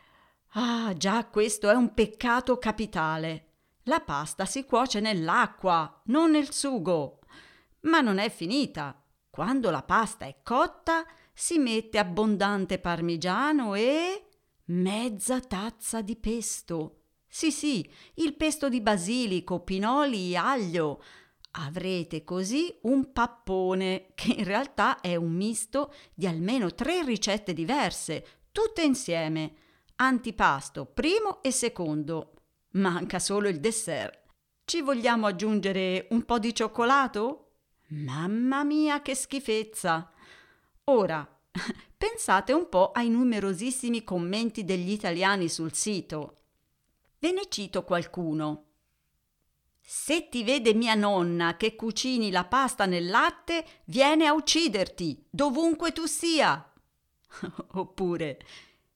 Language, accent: Italian, native